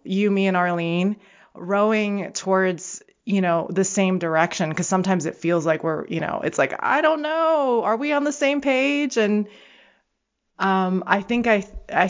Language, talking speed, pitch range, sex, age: English, 175 wpm, 165-200 Hz, female, 20-39